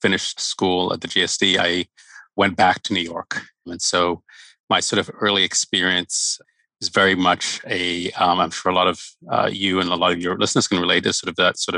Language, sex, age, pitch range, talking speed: English, male, 30-49, 90-110 Hz, 220 wpm